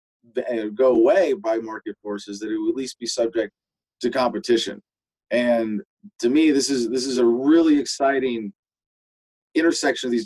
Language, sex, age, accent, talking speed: English, male, 30-49, American, 160 wpm